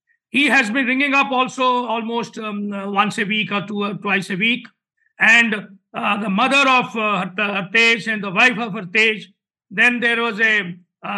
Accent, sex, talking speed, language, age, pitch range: Indian, male, 185 wpm, English, 50-69, 205-265 Hz